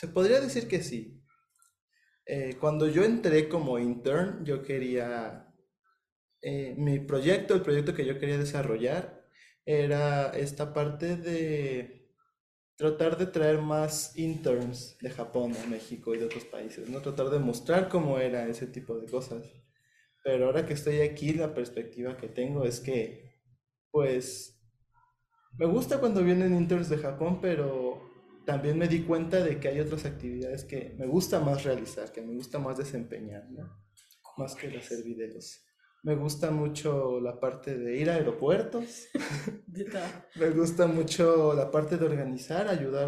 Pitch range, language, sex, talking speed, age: 125-165 Hz, Spanish, male, 155 wpm, 20-39